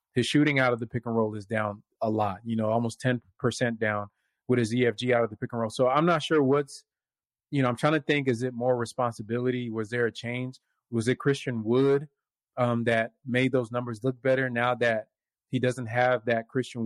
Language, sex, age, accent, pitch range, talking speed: English, male, 30-49, American, 115-130 Hz, 225 wpm